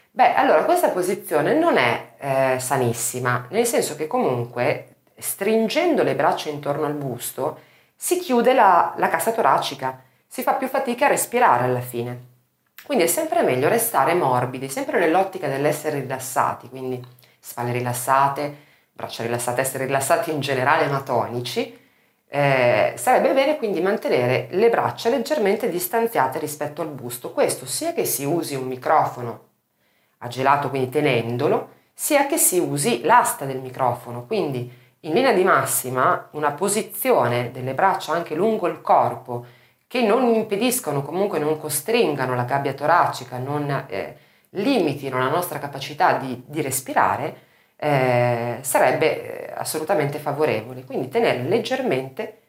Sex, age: female, 40-59